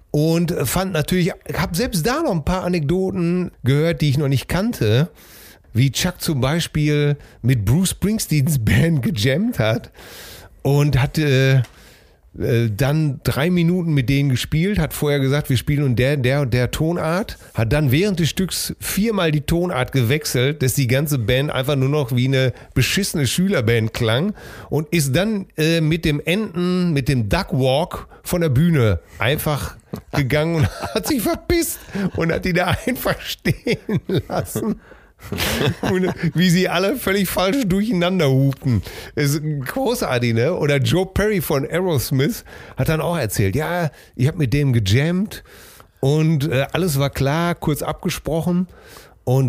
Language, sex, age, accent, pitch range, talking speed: German, male, 40-59, German, 130-170 Hz, 155 wpm